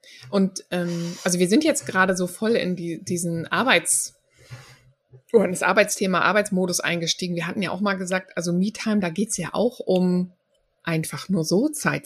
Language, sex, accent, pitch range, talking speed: German, female, German, 160-190 Hz, 180 wpm